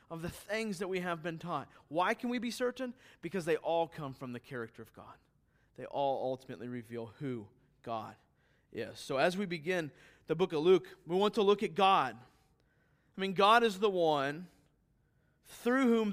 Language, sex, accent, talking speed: English, male, American, 190 wpm